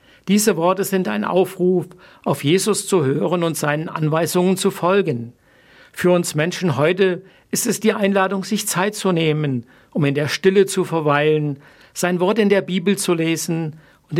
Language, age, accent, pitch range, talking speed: German, 60-79, German, 155-200 Hz, 170 wpm